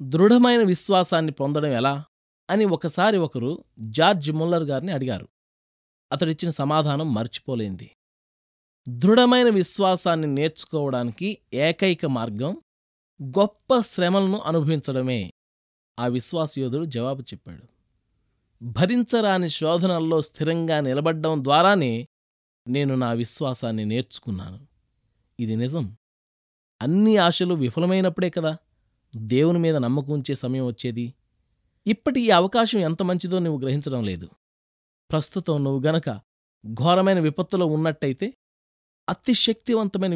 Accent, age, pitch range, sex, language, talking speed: native, 20-39, 120-175 Hz, male, Telugu, 90 wpm